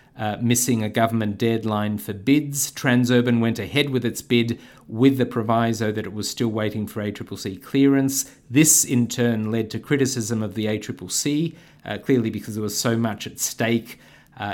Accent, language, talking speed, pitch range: Australian, English, 180 wpm, 105-120 Hz